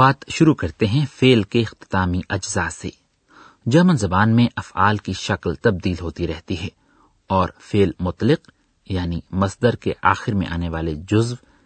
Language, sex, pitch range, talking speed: Urdu, male, 90-125 Hz, 155 wpm